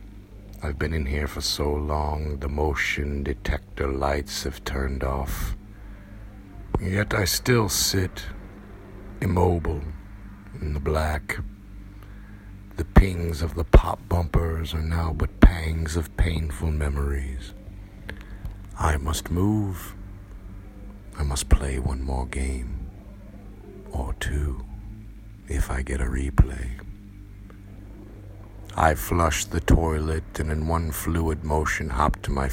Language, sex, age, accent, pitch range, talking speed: English, male, 60-79, American, 75-100 Hz, 115 wpm